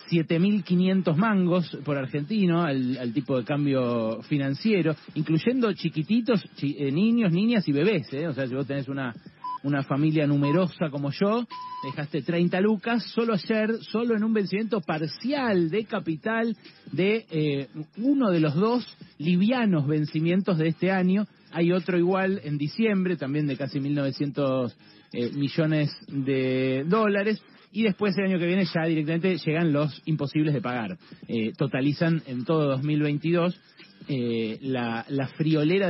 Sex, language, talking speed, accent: male, Spanish, 140 wpm, Argentinian